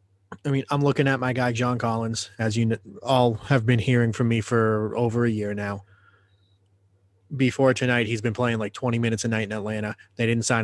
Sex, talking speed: male, 210 wpm